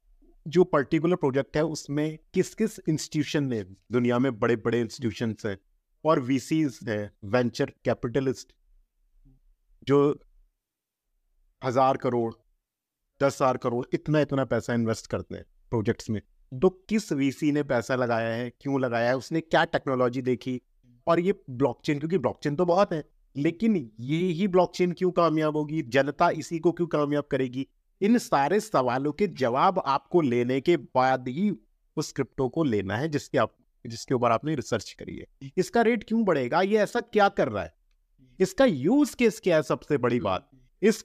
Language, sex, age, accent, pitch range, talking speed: Hindi, male, 50-69, native, 125-170 Hz, 160 wpm